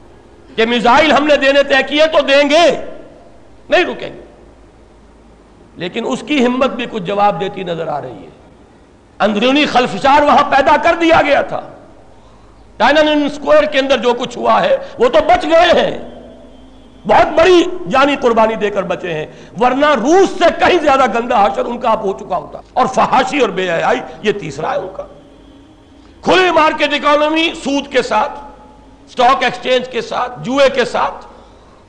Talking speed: 165 wpm